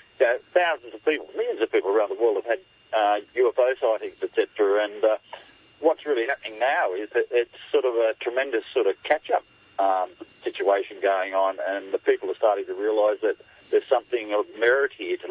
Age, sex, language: 50-69, male, English